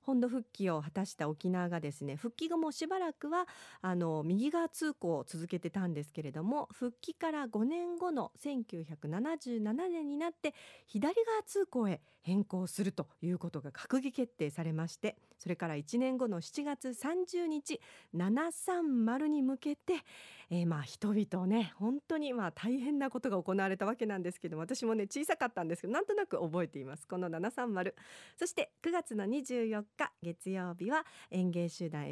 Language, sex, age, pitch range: Japanese, female, 40-59, 175-295 Hz